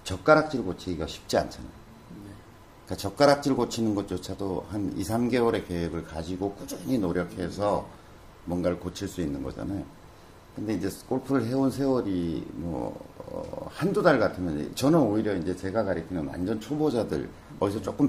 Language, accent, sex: Korean, native, male